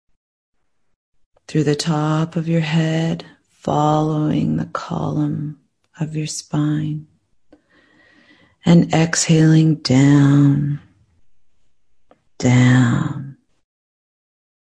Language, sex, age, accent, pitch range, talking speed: English, female, 30-49, American, 110-155 Hz, 65 wpm